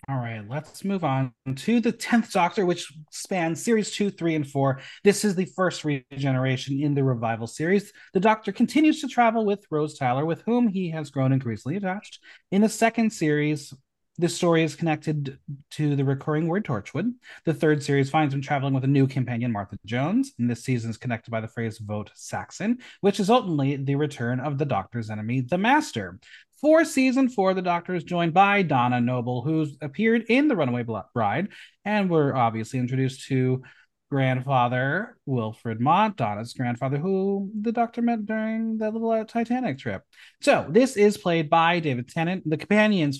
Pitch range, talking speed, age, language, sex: 125-205 Hz, 180 wpm, 30-49, English, male